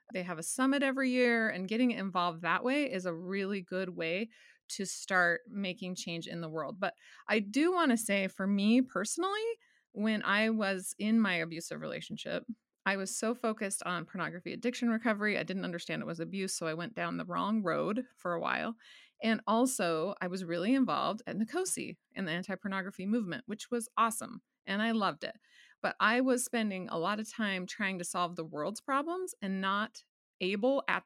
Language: English